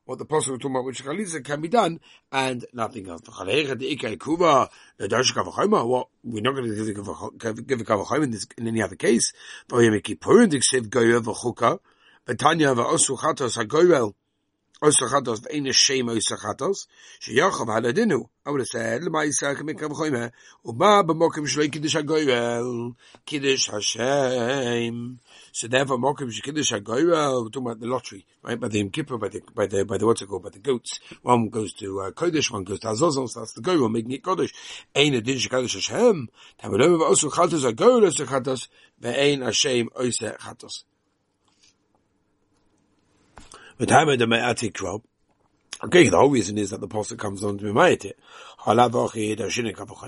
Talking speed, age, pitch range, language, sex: 140 wpm, 60-79, 110-140 Hz, English, male